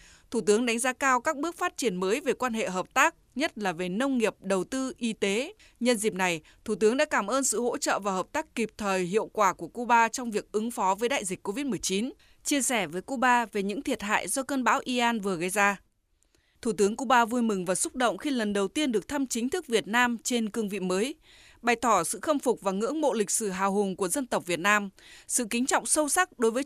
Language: Vietnamese